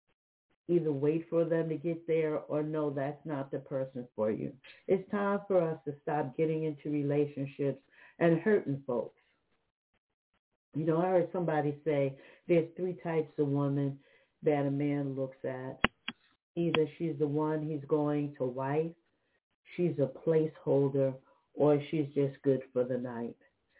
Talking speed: 155 wpm